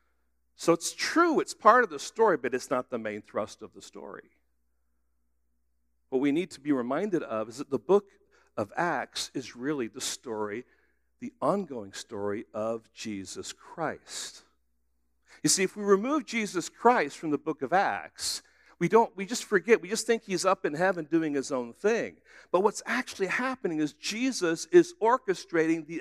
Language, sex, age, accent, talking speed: English, male, 60-79, American, 180 wpm